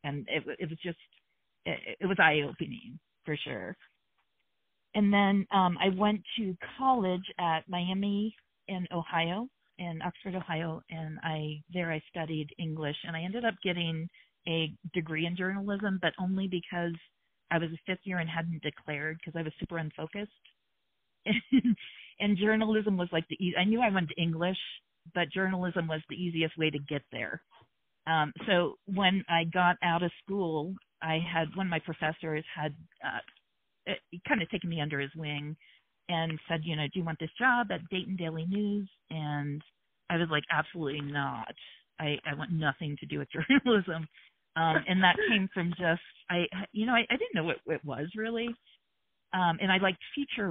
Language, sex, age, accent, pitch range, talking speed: English, female, 40-59, American, 160-190 Hz, 175 wpm